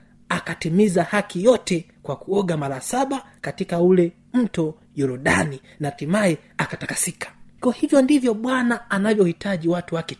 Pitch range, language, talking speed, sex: 155-215 Hz, Swahili, 125 wpm, male